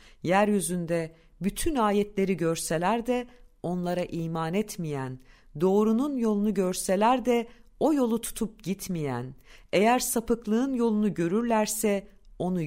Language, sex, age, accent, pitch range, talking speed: Turkish, female, 50-69, native, 165-220 Hz, 100 wpm